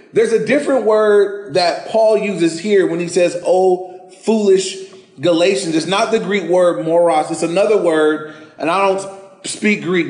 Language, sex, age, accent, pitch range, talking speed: English, male, 30-49, American, 170-220 Hz, 165 wpm